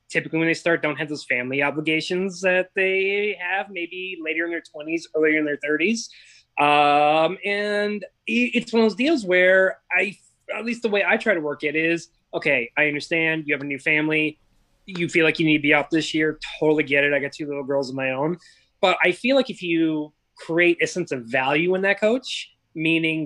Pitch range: 135-170 Hz